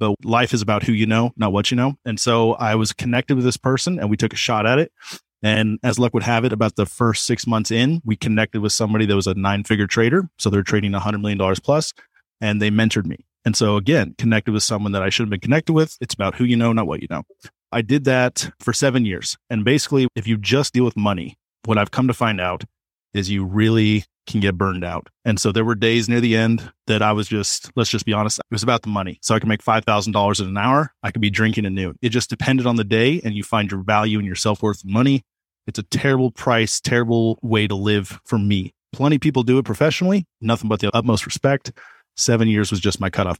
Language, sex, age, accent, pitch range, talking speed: English, male, 30-49, American, 105-120 Hz, 255 wpm